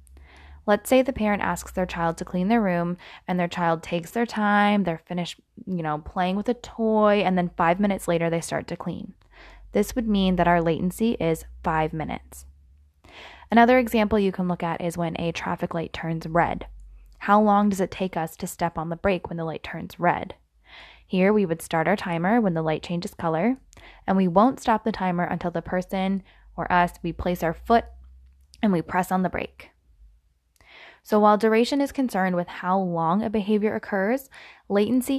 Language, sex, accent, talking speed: English, female, American, 200 wpm